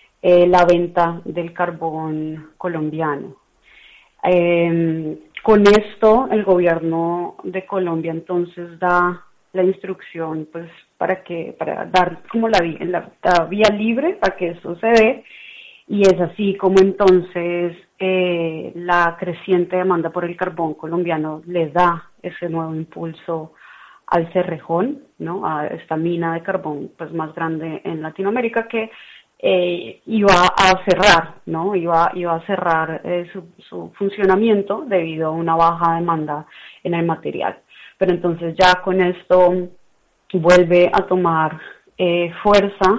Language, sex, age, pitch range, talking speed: Spanish, female, 30-49, 165-190 Hz, 135 wpm